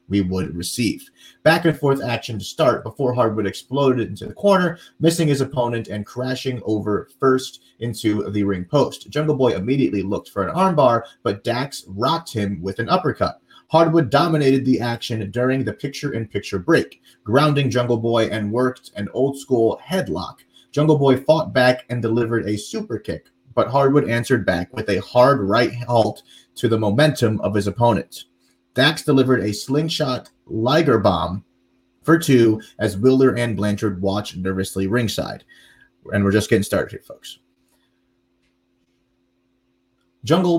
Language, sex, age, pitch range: English, male, 30-49, 100-135 Hz